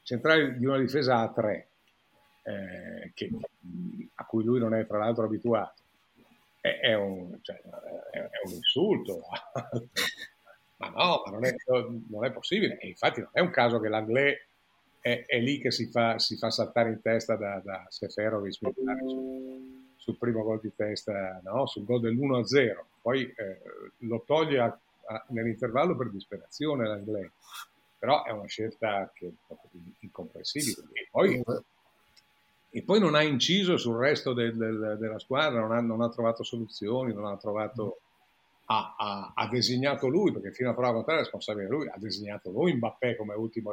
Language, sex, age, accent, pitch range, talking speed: Italian, male, 50-69, native, 110-130 Hz, 150 wpm